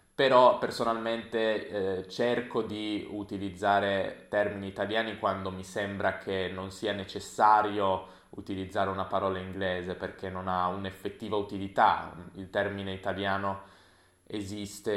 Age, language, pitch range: 20-39, Italian, 95-105 Hz